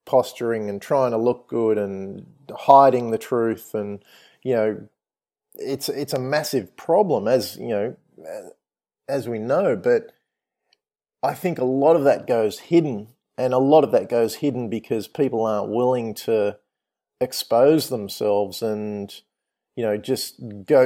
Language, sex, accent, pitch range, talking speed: English, male, Australian, 110-135 Hz, 150 wpm